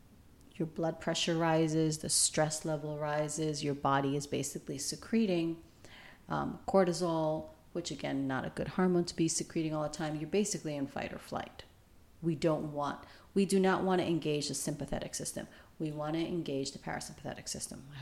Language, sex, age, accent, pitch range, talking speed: English, female, 40-59, American, 145-170 Hz, 175 wpm